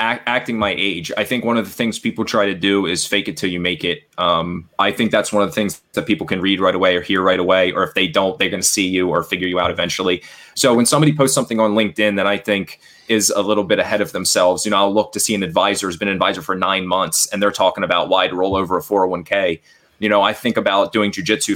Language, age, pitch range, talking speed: English, 20-39, 95-105 Hz, 285 wpm